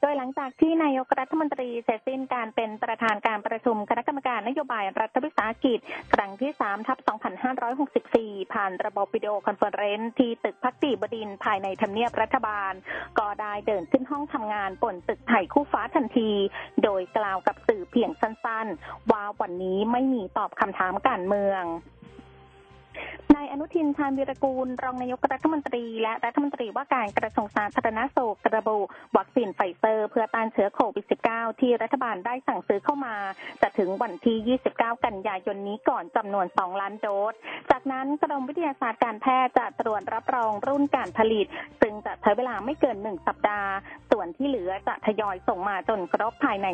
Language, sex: Thai, female